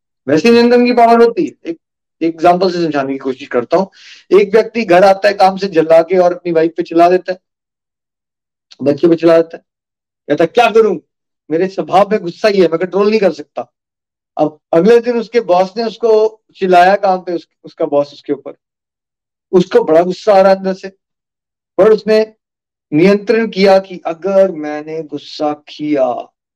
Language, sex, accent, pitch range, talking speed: Hindi, male, native, 150-205 Hz, 140 wpm